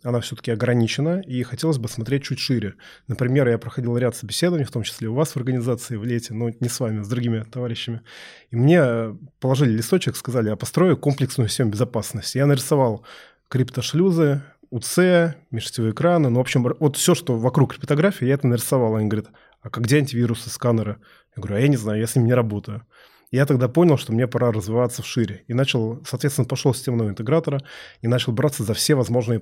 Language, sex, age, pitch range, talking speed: Russian, male, 20-39, 115-140 Hz, 200 wpm